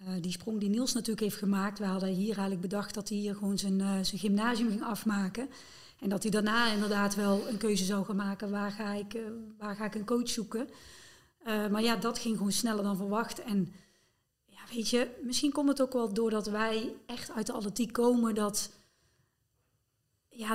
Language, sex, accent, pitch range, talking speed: Dutch, female, Dutch, 200-230 Hz, 205 wpm